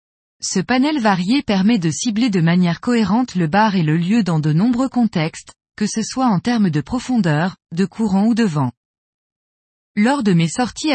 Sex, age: female, 20-39